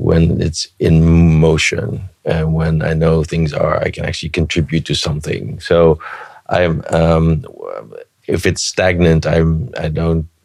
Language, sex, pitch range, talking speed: English, male, 80-85 Hz, 145 wpm